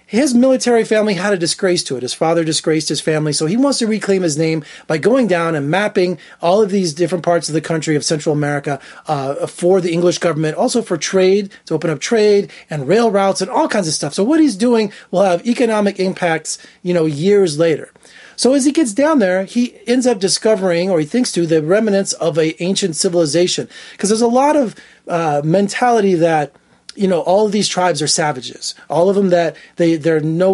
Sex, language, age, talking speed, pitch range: male, English, 30-49, 220 wpm, 160-215 Hz